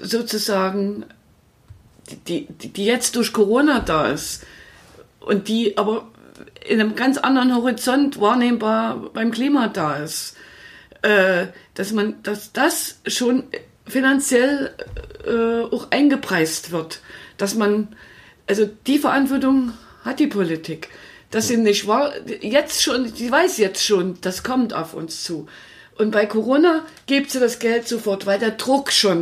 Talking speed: 140 wpm